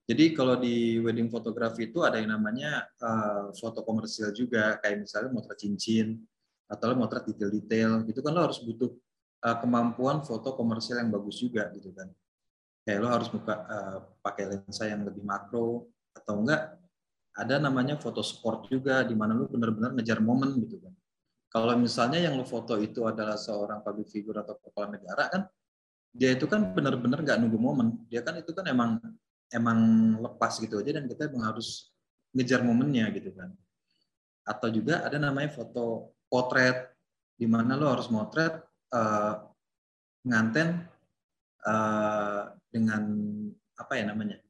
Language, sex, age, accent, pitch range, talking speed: Indonesian, male, 20-39, native, 110-140 Hz, 155 wpm